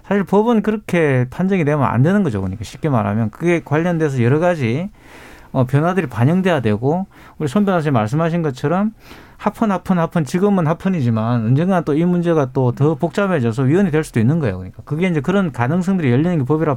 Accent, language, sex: native, Korean, male